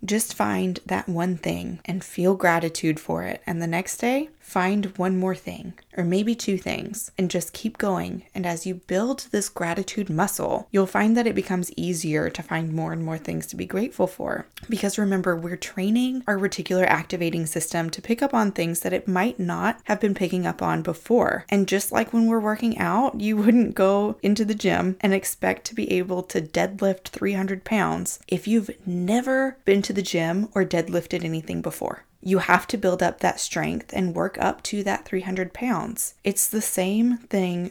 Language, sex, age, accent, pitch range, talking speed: English, female, 20-39, American, 180-215 Hz, 195 wpm